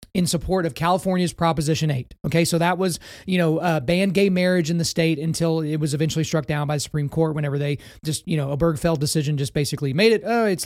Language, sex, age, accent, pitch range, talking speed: English, male, 30-49, American, 155-195 Hz, 240 wpm